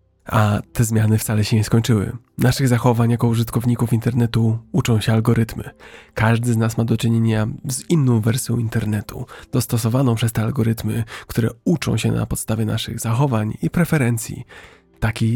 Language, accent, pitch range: Polish, native, 115-125 Hz